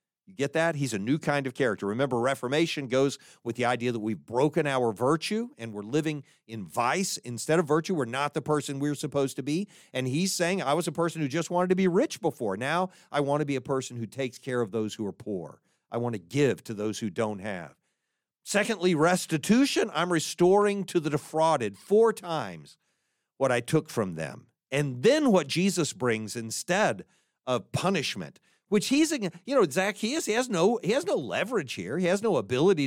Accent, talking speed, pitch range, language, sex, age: American, 205 wpm, 130-195 Hz, English, male, 50-69